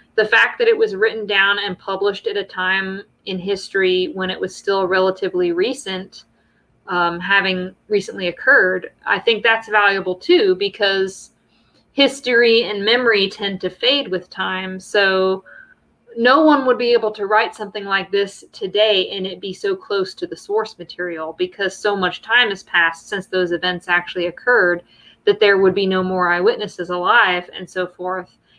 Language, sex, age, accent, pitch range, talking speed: English, female, 20-39, American, 180-220 Hz, 170 wpm